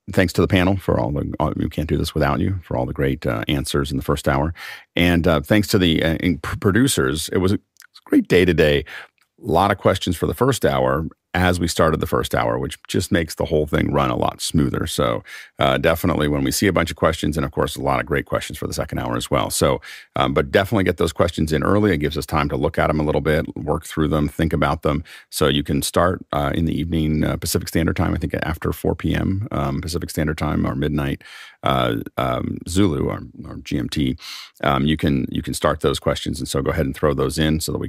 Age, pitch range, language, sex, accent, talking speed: 40-59, 75-90 Hz, English, male, American, 260 wpm